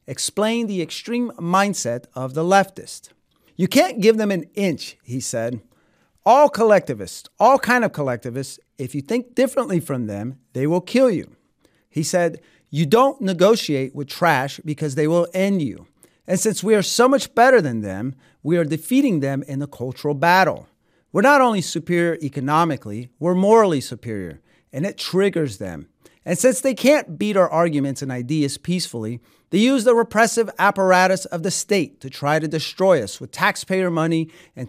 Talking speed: 170 wpm